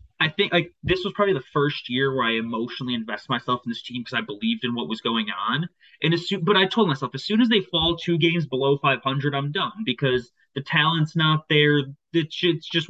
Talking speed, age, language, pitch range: 235 wpm, 20-39, English, 135-175 Hz